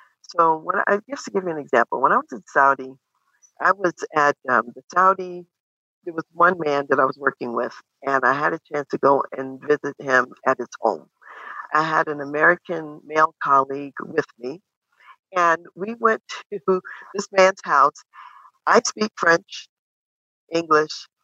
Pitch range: 150-190 Hz